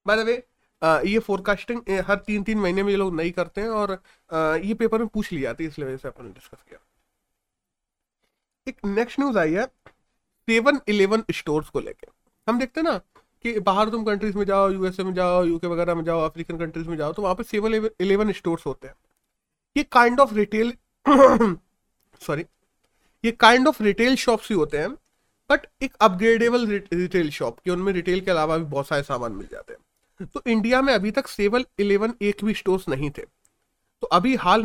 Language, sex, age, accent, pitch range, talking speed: Hindi, male, 30-49, native, 175-230 Hz, 190 wpm